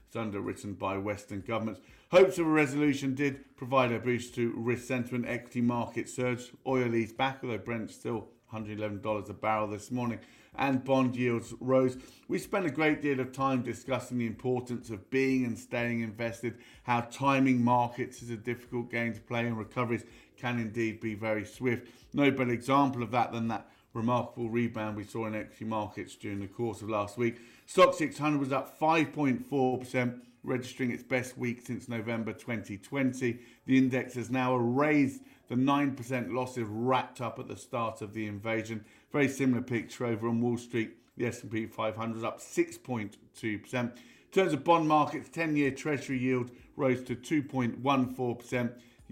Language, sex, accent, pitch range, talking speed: English, male, British, 115-130 Hz, 165 wpm